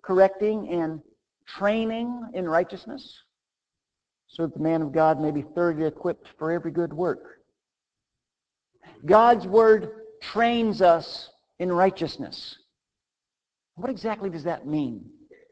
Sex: male